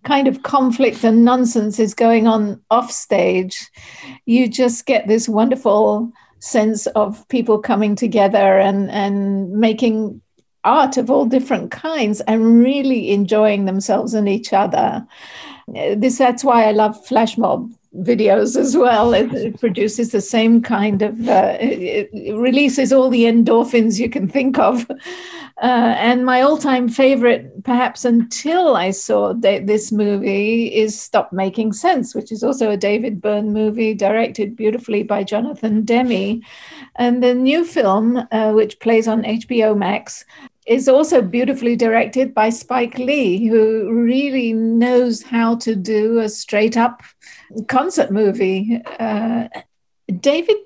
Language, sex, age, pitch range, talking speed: English, female, 50-69, 215-250 Hz, 135 wpm